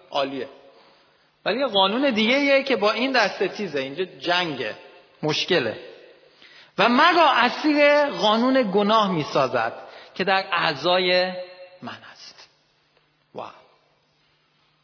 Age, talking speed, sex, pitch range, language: 40-59, 105 wpm, male, 150-240 Hz, Persian